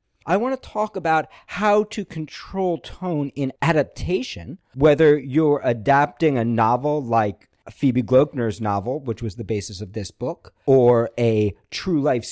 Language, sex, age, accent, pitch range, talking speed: English, male, 40-59, American, 105-145 Hz, 150 wpm